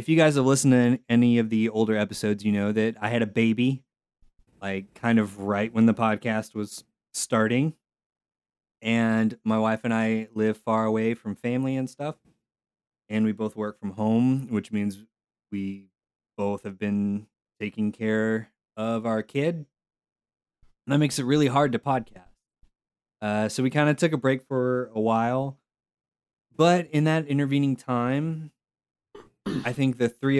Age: 20-39